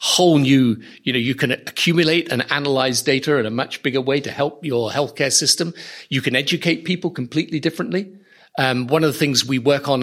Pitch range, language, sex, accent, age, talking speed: 130-160 Hz, English, male, British, 50-69, 205 wpm